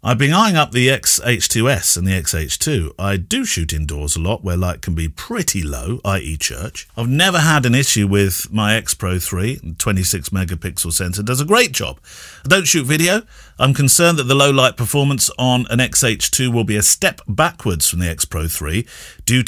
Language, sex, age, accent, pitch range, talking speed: English, male, 50-69, British, 90-125 Hz, 190 wpm